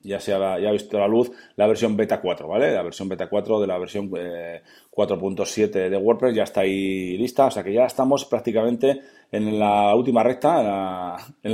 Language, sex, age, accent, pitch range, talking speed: Spanish, male, 30-49, Spanish, 95-115 Hz, 215 wpm